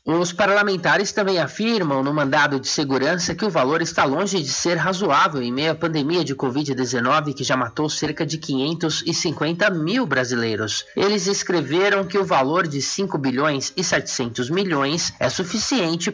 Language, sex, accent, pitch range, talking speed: Portuguese, male, Brazilian, 140-195 Hz, 160 wpm